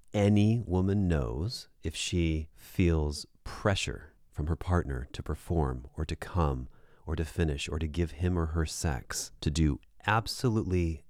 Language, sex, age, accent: English, male, 30-49, American